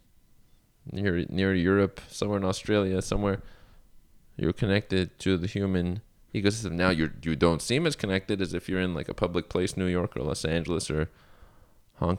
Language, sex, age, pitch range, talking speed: English, male, 20-39, 90-120 Hz, 170 wpm